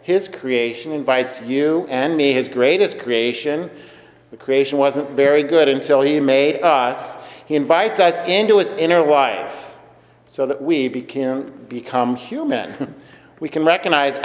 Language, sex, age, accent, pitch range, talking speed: English, male, 50-69, American, 135-165 Hz, 145 wpm